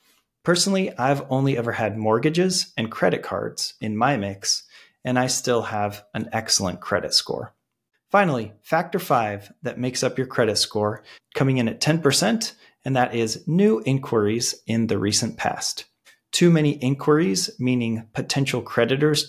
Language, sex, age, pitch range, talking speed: English, male, 30-49, 110-145 Hz, 150 wpm